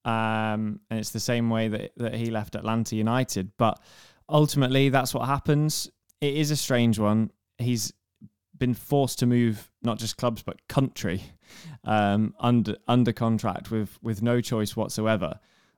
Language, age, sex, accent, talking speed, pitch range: English, 20-39, male, British, 155 wpm, 110-140 Hz